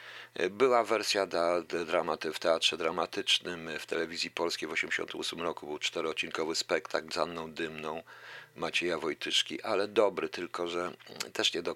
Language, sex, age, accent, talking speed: Polish, male, 50-69, native, 150 wpm